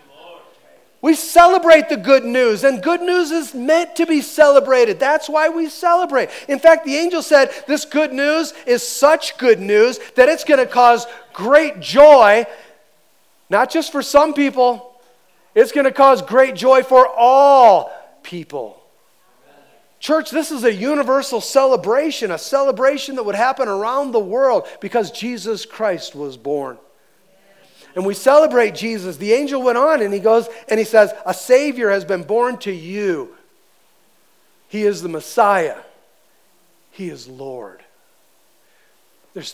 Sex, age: male, 40-59